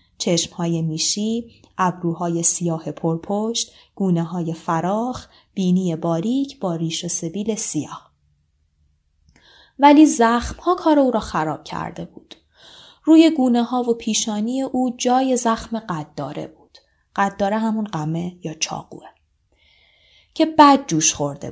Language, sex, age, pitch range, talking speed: Persian, female, 20-39, 170-255 Hz, 125 wpm